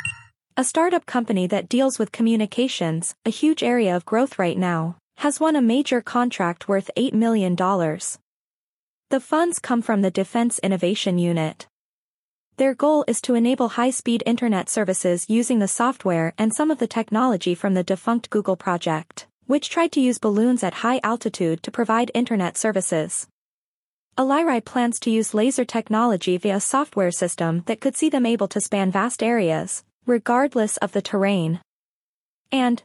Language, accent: English, American